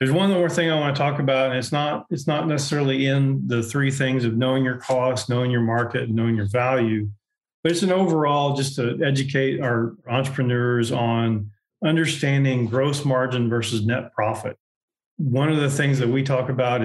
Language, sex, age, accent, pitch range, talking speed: English, male, 40-59, American, 120-140 Hz, 190 wpm